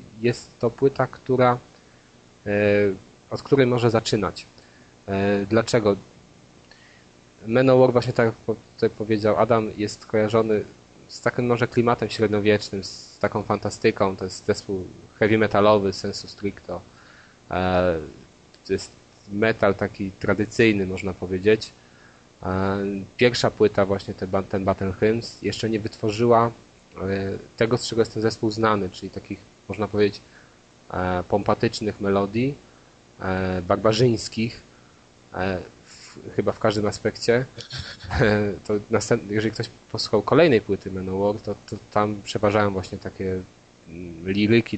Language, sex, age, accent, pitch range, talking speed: Polish, male, 20-39, native, 95-110 Hz, 115 wpm